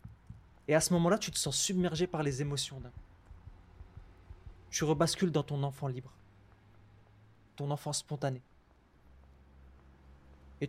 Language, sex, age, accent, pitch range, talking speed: French, male, 20-39, French, 105-170 Hz, 125 wpm